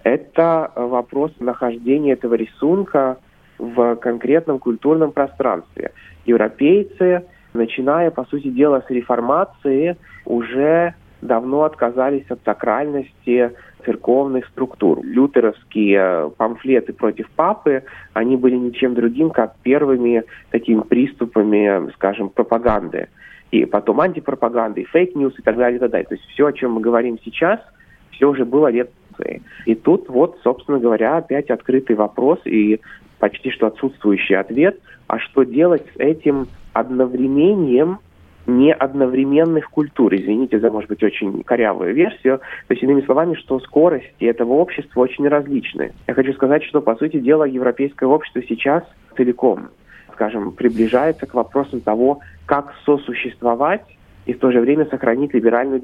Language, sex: Russian, male